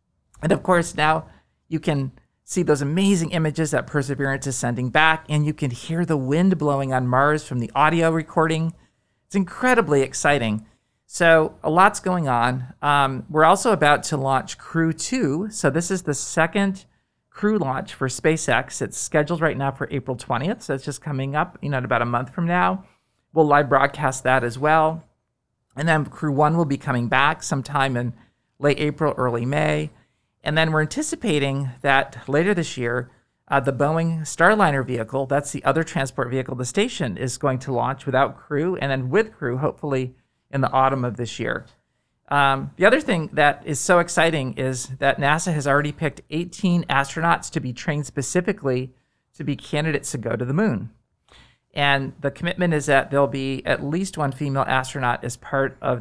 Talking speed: 185 wpm